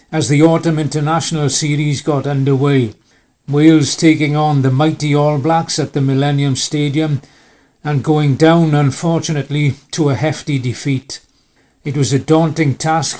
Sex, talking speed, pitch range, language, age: male, 140 wpm, 140-160 Hz, English, 60-79